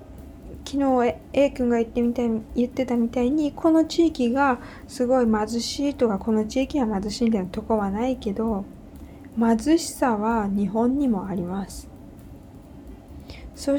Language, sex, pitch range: Japanese, female, 205-275 Hz